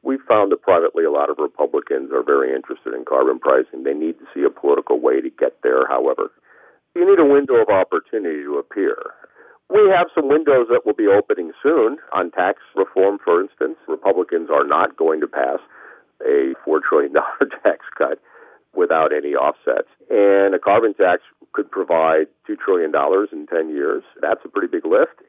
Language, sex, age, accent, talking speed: English, male, 50-69, American, 185 wpm